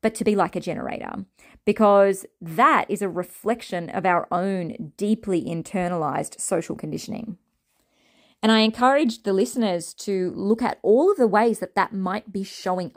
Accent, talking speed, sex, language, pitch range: Australian, 160 wpm, female, English, 175-225 Hz